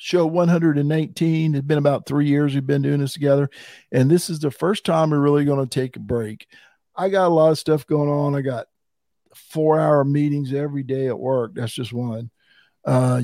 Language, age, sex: English, 50-69, male